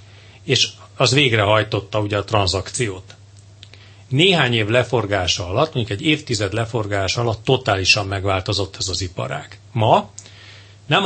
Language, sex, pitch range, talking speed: Hungarian, male, 100-125 Hz, 125 wpm